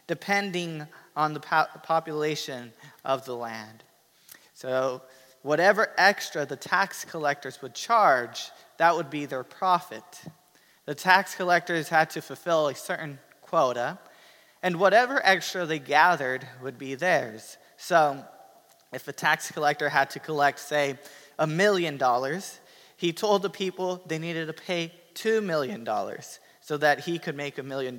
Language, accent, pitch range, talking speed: English, American, 145-180 Hz, 145 wpm